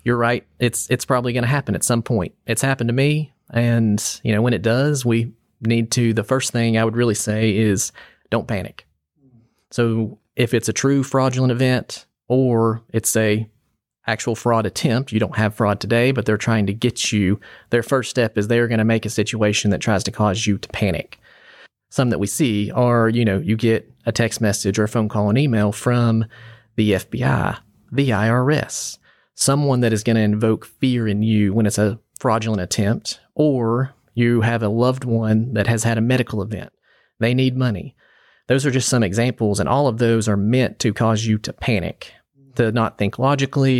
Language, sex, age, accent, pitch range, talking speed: English, male, 30-49, American, 105-125 Hz, 200 wpm